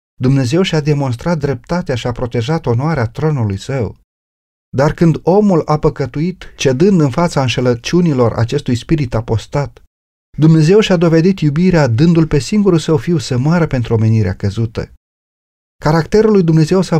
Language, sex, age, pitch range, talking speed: Romanian, male, 40-59, 115-170 Hz, 140 wpm